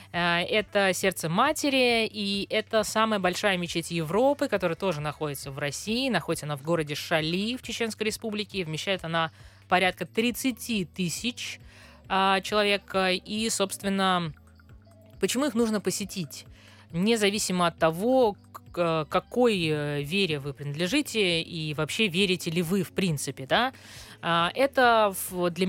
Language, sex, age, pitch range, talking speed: Russian, female, 20-39, 155-210 Hz, 120 wpm